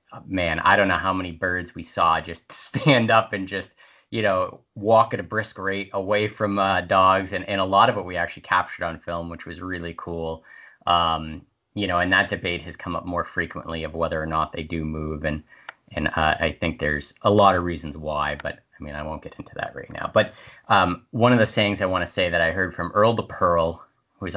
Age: 30-49